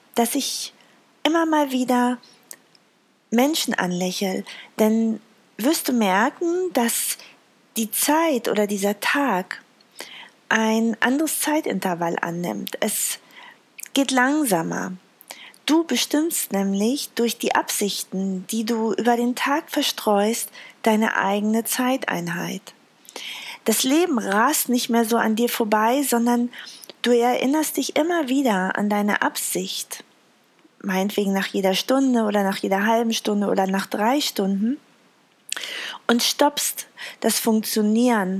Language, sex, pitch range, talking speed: German, female, 210-260 Hz, 115 wpm